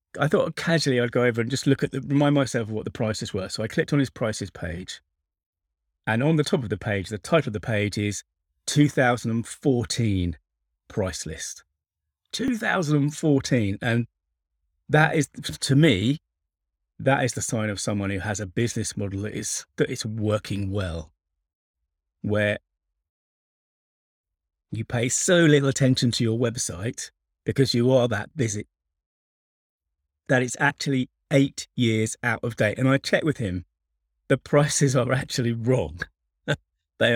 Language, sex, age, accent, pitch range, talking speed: English, male, 30-49, British, 95-130 Hz, 155 wpm